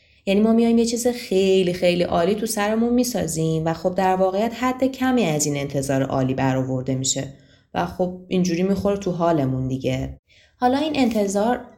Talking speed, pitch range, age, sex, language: 170 wpm, 150-210 Hz, 20-39, female, Persian